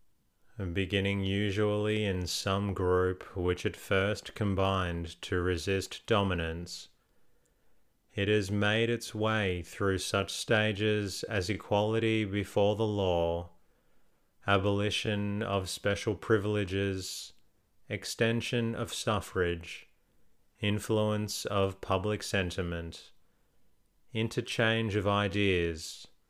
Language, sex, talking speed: English, male, 90 wpm